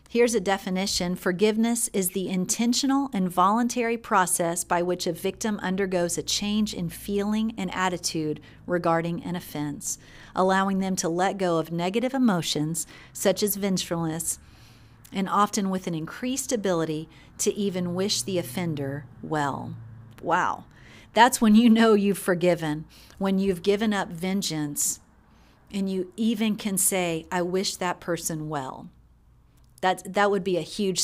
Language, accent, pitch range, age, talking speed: English, American, 165-205 Hz, 40-59, 145 wpm